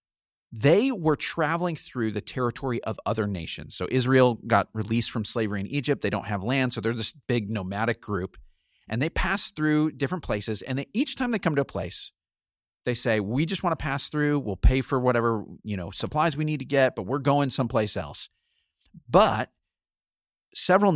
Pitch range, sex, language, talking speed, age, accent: 110-155 Hz, male, English, 195 wpm, 40-59, American